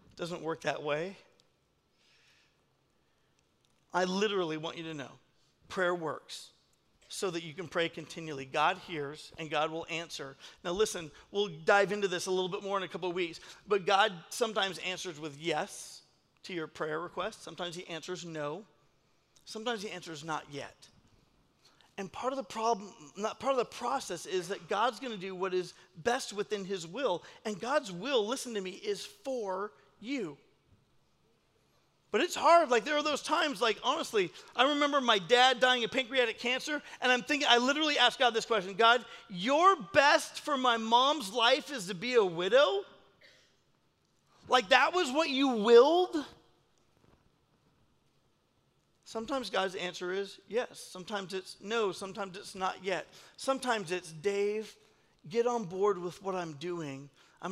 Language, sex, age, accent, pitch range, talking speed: English, male, 40-59, American, 180-245 Hz, 165 wpm